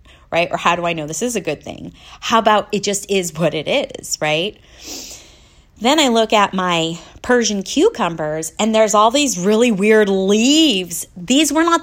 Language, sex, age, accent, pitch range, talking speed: English, female, 30-49, American, 180-230 Hz, 185 wpm